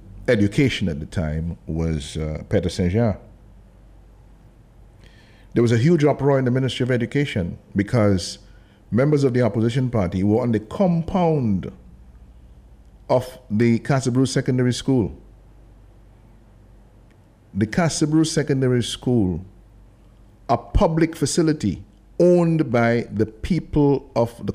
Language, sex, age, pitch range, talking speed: English, male, 50-69, 100-125 Hz, 115 wpm